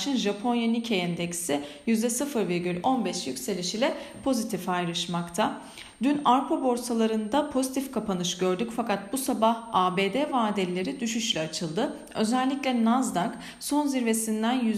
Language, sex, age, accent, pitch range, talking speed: Turkish, female, 40-59, native, 195-265 Hz, 100 wpm